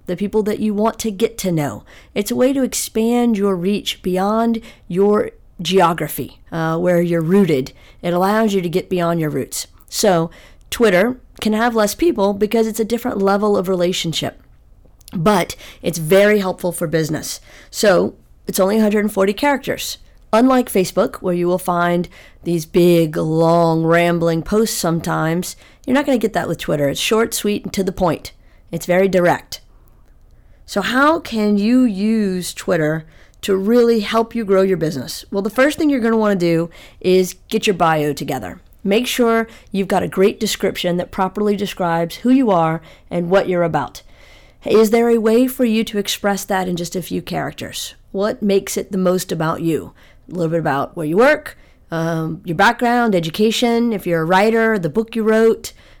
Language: English